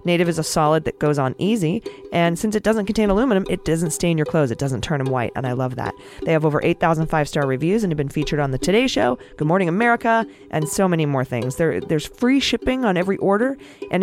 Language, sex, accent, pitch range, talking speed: English, female, American, 145-195 Hz, 245 wpm